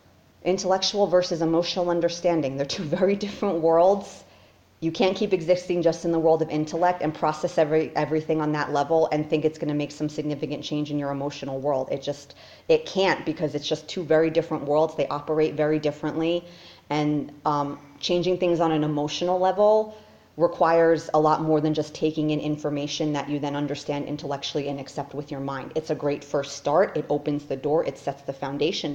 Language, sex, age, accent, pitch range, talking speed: English, female, 30-49, American, 145-175 Hz, 195 wpm